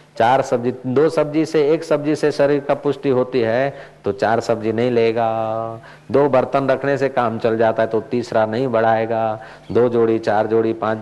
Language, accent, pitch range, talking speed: Hindi, native, 120-155 Hz, 190 wpm